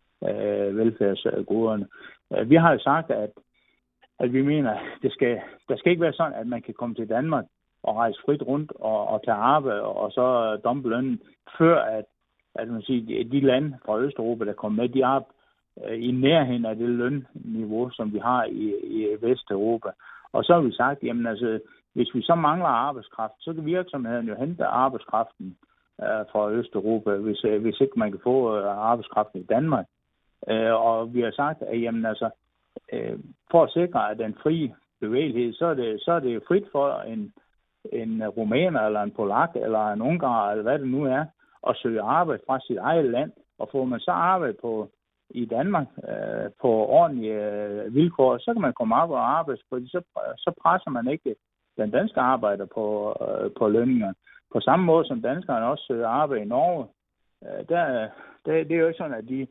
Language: Danish